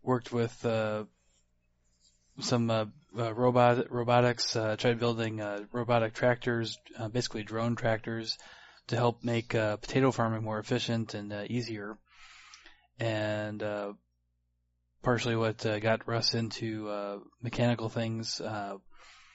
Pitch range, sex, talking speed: 105-115 Hz, male, 125 wpm